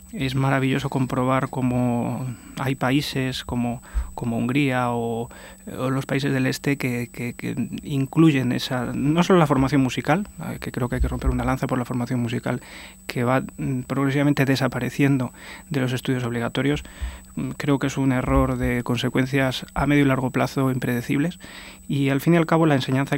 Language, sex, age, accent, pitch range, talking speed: Spanish, male, 20-39, Spanish, 125-140 Hz, 170 wpm